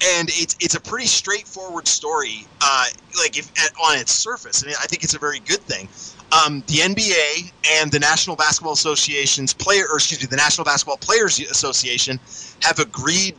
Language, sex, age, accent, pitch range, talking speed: English, male, 30-49, American, 125-165 Hz, 195 wpm